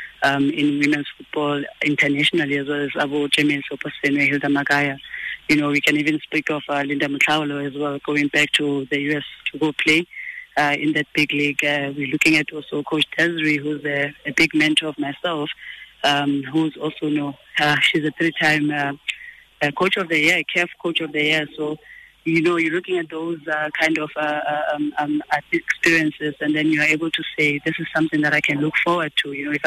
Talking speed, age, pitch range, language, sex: 210 wpm, 20-39, 145-160 Hz, English, female